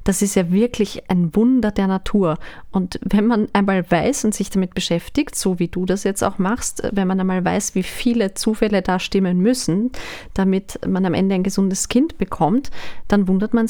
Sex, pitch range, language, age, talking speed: female, 190-230 Hz, German, 30-49, 195 wpm